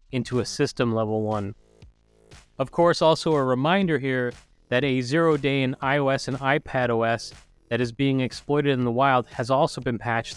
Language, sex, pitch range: English, male, 115-140 Hz